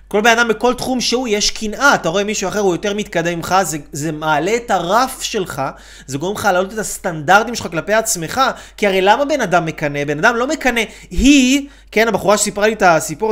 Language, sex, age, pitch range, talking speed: Hebrew, male, 30-49, 175-230 Hz, 215 wpm